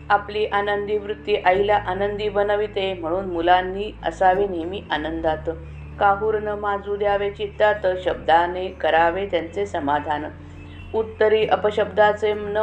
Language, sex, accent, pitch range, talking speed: Marathi, female, native, 165-210 Hz, 110 wpm